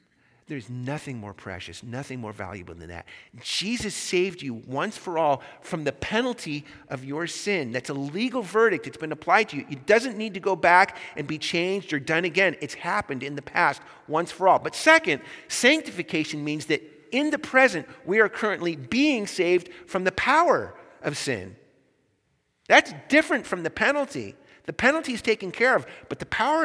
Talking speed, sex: 185 wpm, male